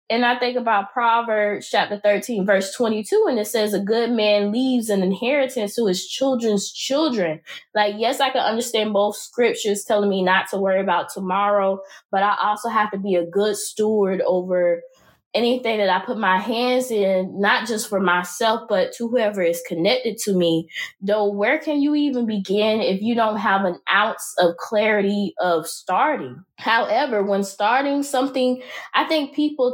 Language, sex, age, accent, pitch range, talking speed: English, female, 20-39, American, 190-240 Hz, 175 wpm